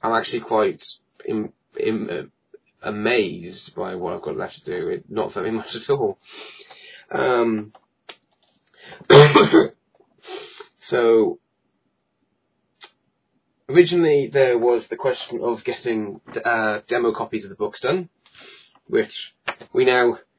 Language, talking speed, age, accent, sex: English, 105 wpm, 20-39, British, male